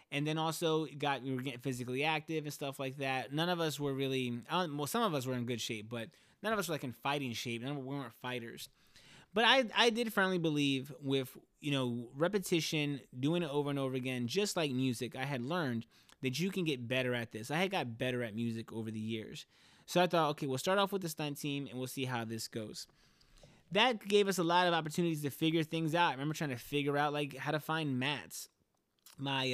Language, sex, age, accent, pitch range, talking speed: English, male, 20-39, American, 120-155 Hz, 240 wpm